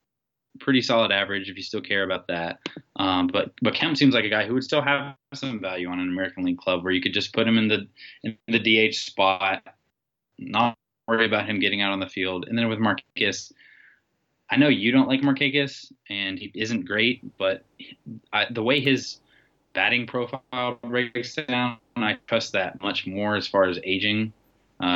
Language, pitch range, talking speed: English, 95-115 Hz, 195 wpm